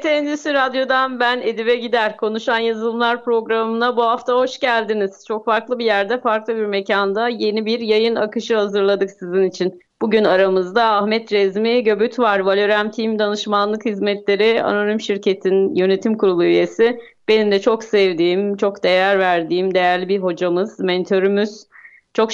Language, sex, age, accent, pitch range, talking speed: Turkish, female, 30-49, native, 185-230 Hz, 140 wpm